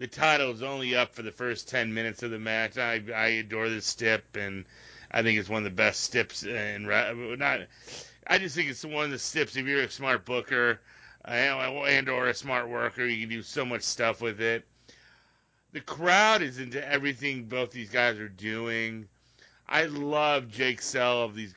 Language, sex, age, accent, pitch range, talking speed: English, male, 30-49, American, 115-140 Hz, 205 wpm